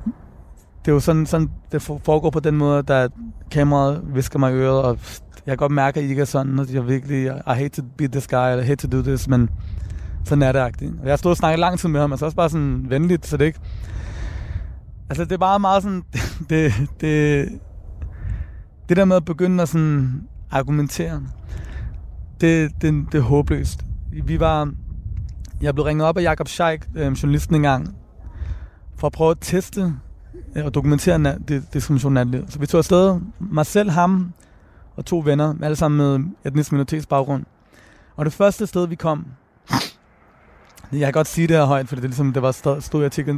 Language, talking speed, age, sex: Danish, 195 wpm, 20-39, male